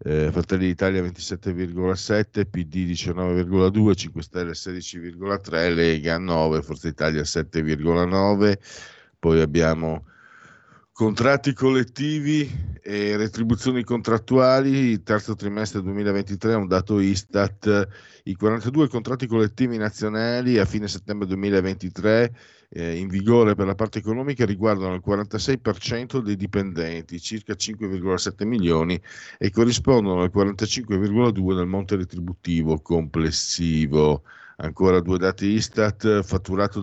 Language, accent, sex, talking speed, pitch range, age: Italian, native, male, 105 wpm, 90-115 Hz, 50-69